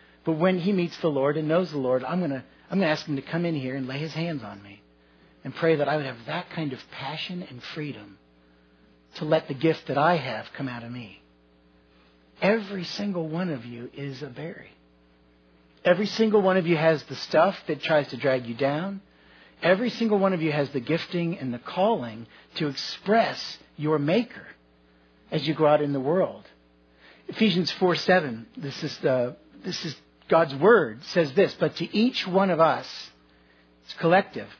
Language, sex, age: English, male, 50-69